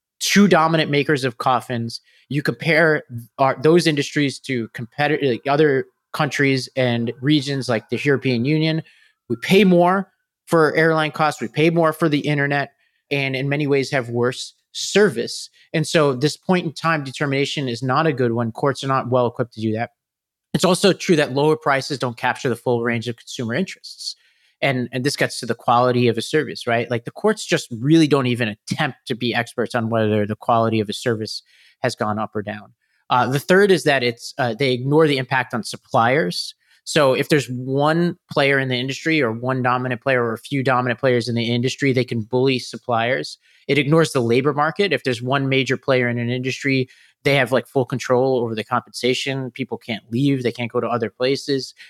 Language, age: English, 30-49